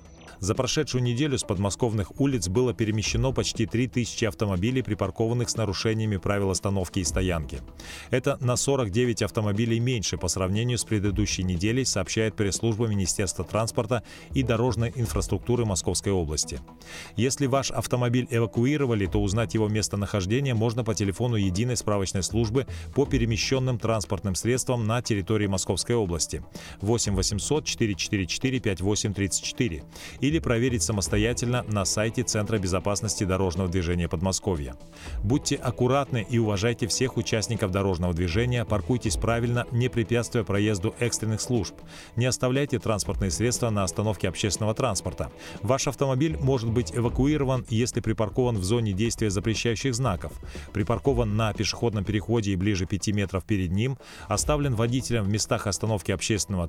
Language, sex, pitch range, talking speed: Russian, male, 100-120 Hz, 130 wpm